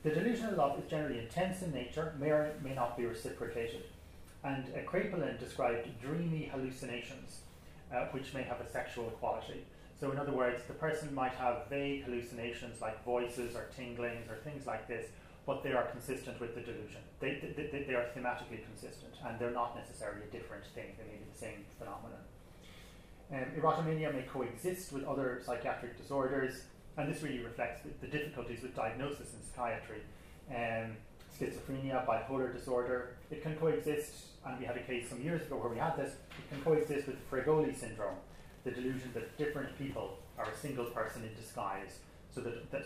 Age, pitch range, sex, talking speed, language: 30-49, 120-140 Hz, male, 180 wpm, English